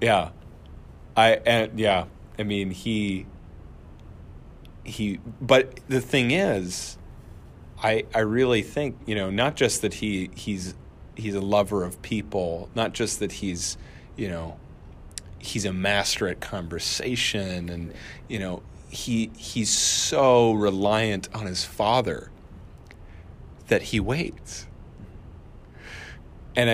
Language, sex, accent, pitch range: English, male, American, 85-115 Hz